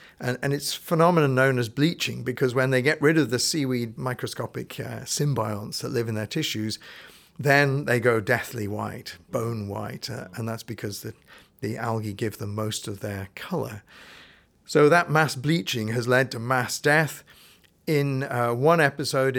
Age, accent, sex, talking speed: 50-69, British, male, 175 wpm